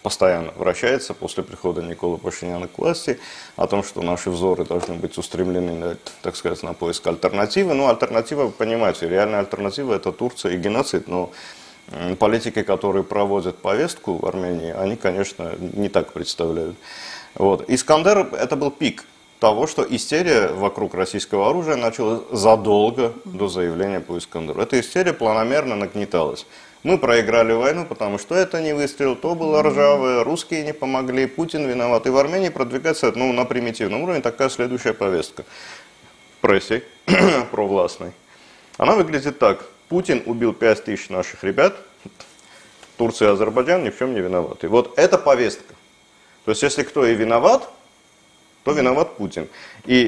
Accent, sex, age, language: native, male, 30-49, Russian